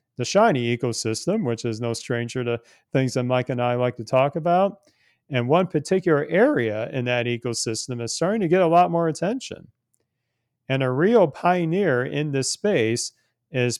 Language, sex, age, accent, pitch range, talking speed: English, male, 40-59, American, 115-140 Hz, 175 wpm